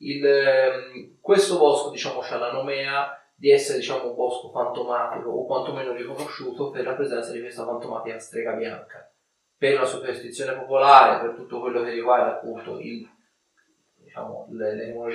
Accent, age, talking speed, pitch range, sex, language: native, 30-49, 145 wpm, 120-145 Hz, male, Italian